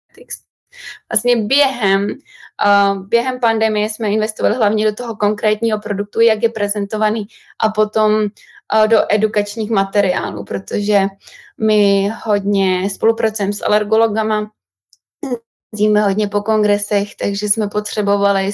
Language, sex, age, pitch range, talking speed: Czech, female, 20-39, 205-230 Hz, 105 wpm